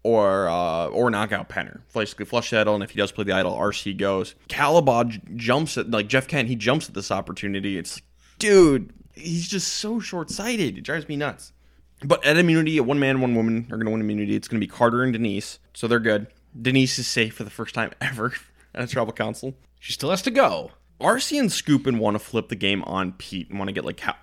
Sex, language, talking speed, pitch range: male, English, 235 wpm, 100-130 Hz